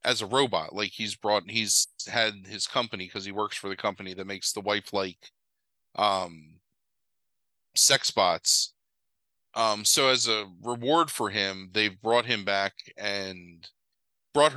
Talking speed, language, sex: 150 wpm, English, male